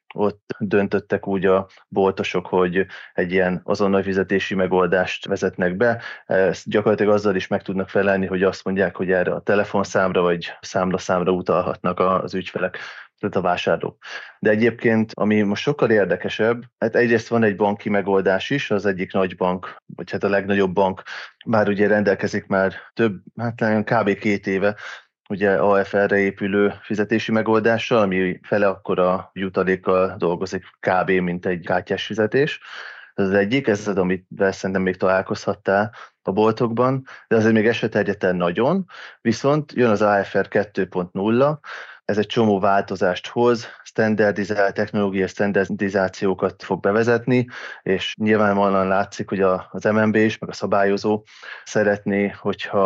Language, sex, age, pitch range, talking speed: Hungarian, male, 20-39, 95-110 Hz, 140 wpm